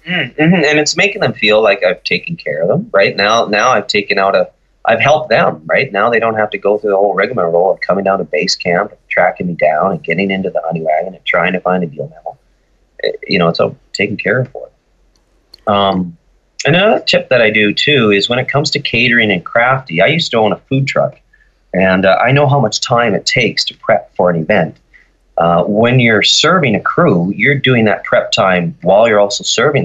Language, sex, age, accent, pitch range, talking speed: English, male, 30-49, American, 100-135 Hz, 235 wpm